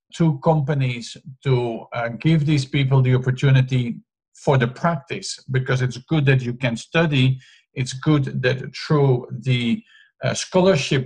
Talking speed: 140 wpm